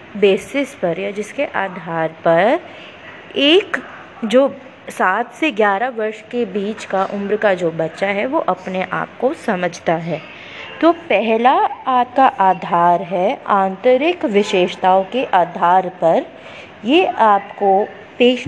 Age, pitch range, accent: 20-39, 190-265 Hz, native